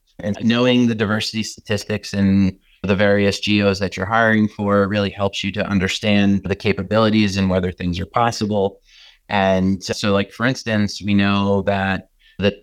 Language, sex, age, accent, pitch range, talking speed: English, male, 30-49, American, 95-110 Hz, 165 wpm